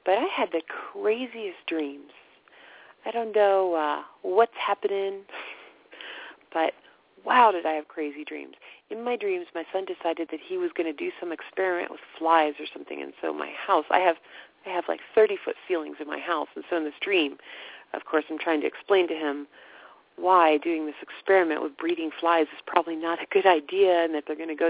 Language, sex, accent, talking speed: English, female, American, 200 wpm